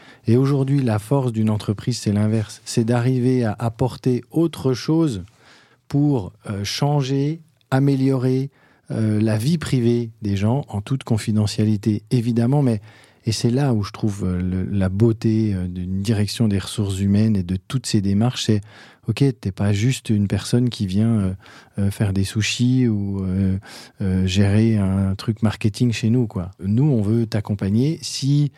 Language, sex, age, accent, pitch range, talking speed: French, male, 40-59, French, 100-120 Hz, 170 wpm